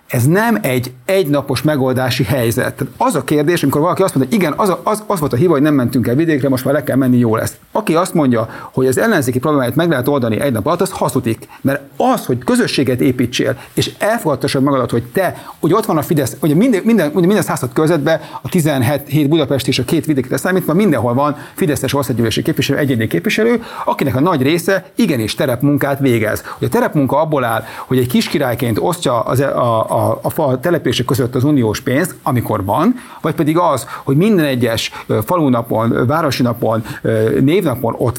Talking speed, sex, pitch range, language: 200 wpm, male, 130-165 Hz, Hungarian